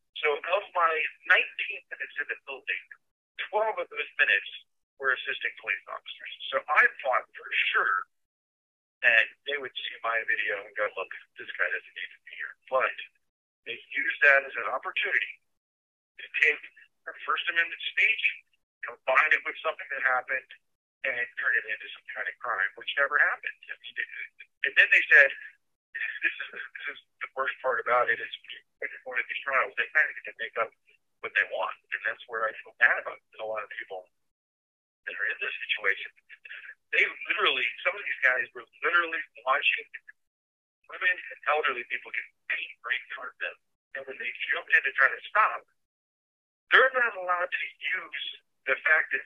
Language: English